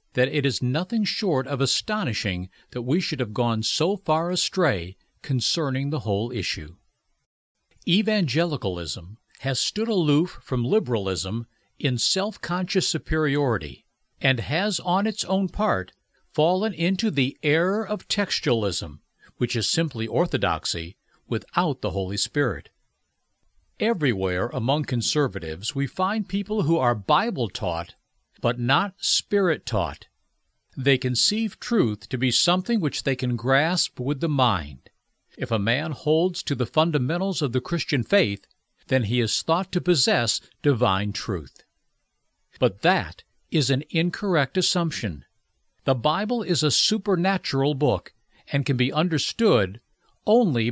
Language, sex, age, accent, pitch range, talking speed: English, male, 60-79, American, 120-175 Hz, 130 wpm